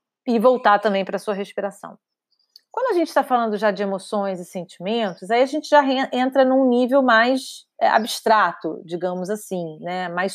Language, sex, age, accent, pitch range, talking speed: Portuguese, female, 30-49, Brazilian, 195-255 Hz, 175 wpm